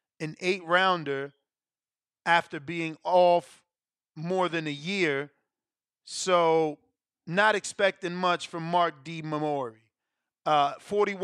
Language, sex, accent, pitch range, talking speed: English, male, American, 165-205 Hz, 95 wpm